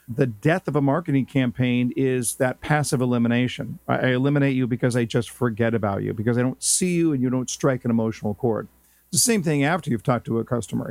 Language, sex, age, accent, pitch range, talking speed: English, male, 50-69, American, 120-150 Hz, 220 wpm